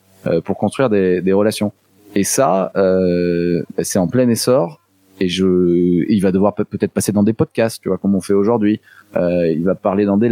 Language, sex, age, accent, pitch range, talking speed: French, male, 20-39, French, 95-115 Hz, 200 wpm